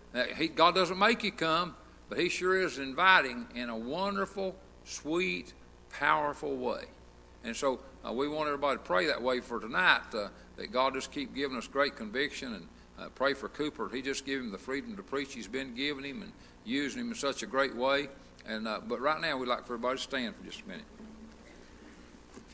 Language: English